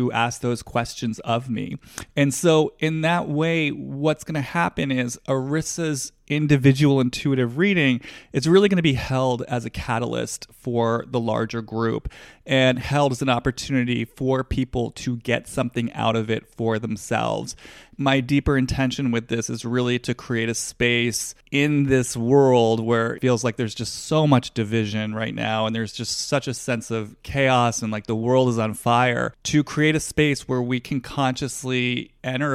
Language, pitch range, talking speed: English, 115-140 Hz, 175 wpm